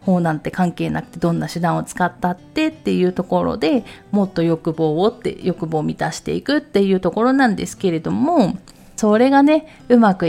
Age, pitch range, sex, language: 30-49, 160-235 Hz, female, Japanese